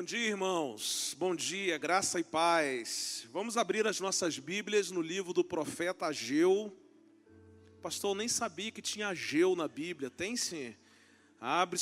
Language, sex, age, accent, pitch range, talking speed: Portuguese, male, 40-59, Brazilian, 160-270 Hz, 150 wpm